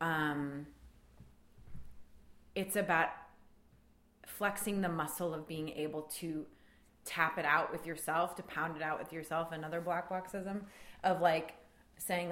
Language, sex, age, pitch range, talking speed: English, female, 20-39, 150-185 Hz, 130 wpm